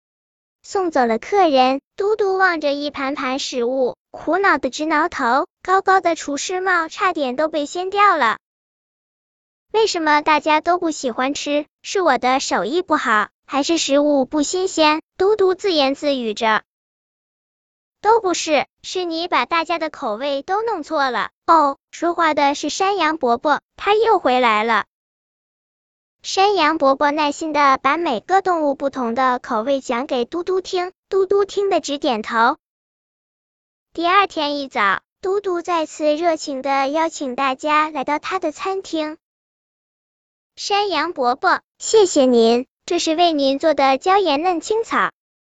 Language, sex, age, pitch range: Chinese, male, 10-29, 275-360 Hz